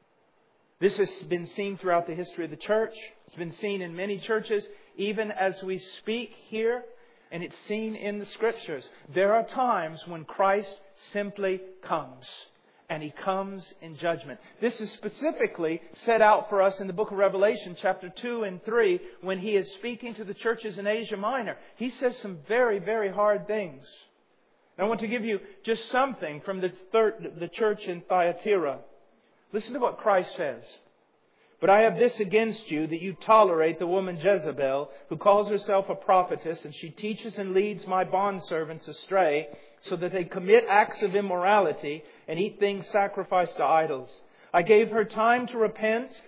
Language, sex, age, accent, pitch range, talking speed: English, male, 40-59, American, 180-220 Hz, 175 wpm